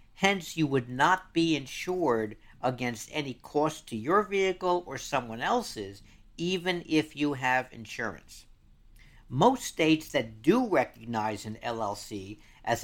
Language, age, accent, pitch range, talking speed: English, 60-79, American, 110-155 Hz, 130 wpm